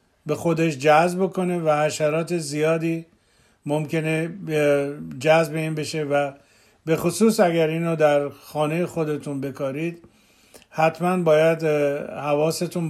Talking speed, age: 105 wpm, 50-69